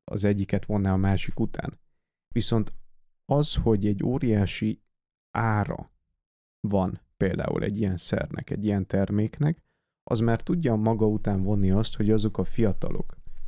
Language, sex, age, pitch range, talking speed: Hungarian, male, 30-49, 95-110 Hz, 140 wpm